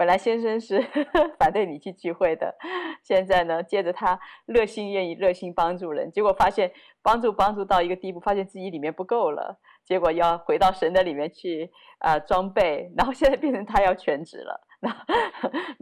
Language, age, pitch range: Chinese, 30-49, 160-195 Hz